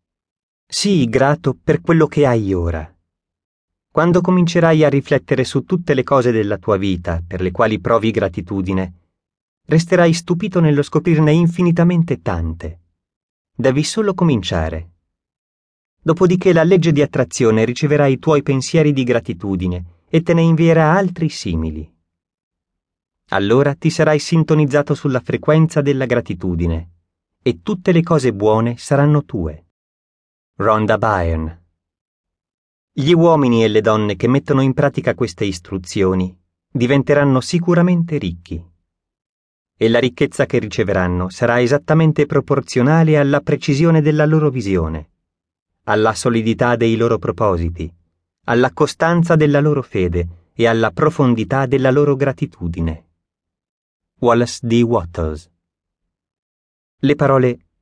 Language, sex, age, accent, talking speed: Italian, male, 30-49, native, 120 wpm